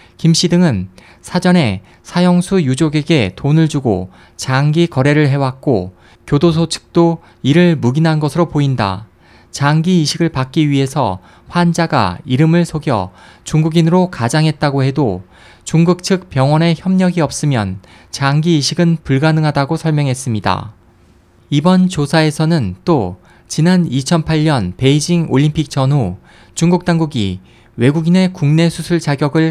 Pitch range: 120-170 Hz